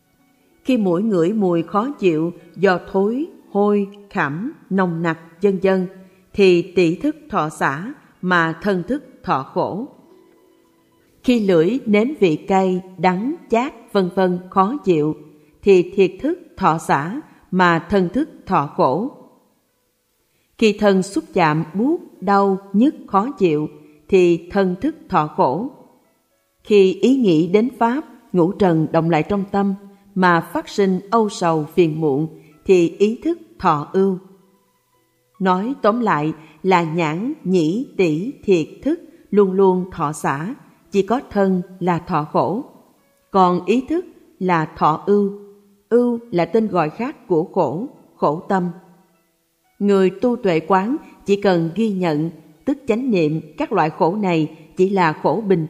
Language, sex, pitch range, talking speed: Vietnamese, female, 170-235 Hz, 145 wpm